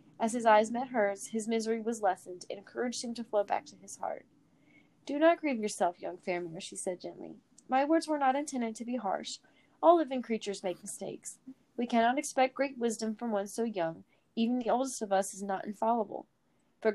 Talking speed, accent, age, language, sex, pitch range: 205 wpm, American, 30-49, English, female, 200-245 Hz